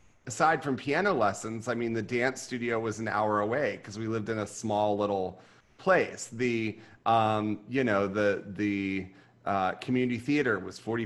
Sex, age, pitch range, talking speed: male, 30-49, 100-115 Hz, 175 wpm